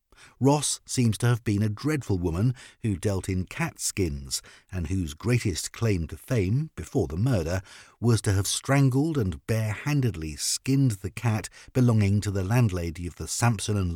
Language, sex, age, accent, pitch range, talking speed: English, male, 50-69, British, 95-125 Hz, 170 wpm